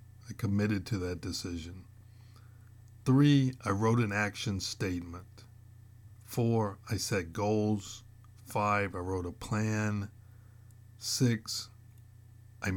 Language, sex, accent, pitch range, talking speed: English, male, American, 100-115 Hz, 100 wpm